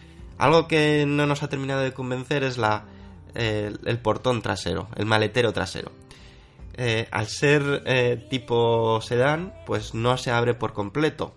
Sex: male